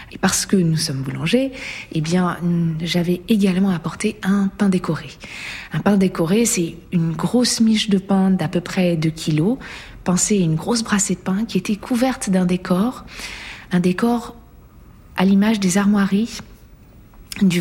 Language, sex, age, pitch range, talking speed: French, female, 40-59, 185-220 Hz, 160 wpm